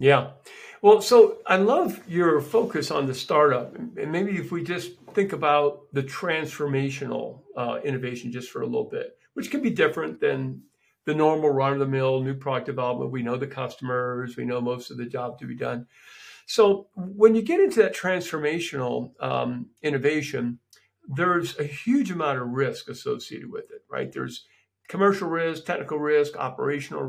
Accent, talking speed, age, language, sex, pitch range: American, 175 wpm, 50-69, English, male, 135-215 Hz